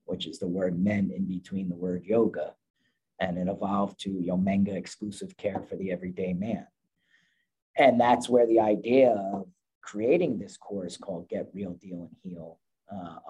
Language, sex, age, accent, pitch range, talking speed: English, male, 40-59, American, 95-120 Hz, 165 wpm